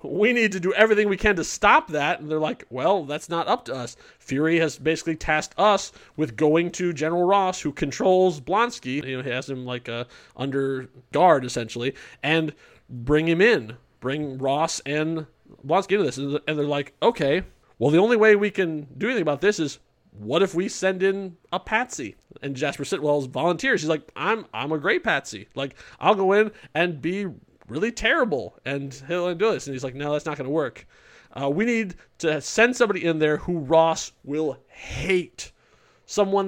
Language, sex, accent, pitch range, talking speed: English, male, American, 145-195 Hz, 195 wpm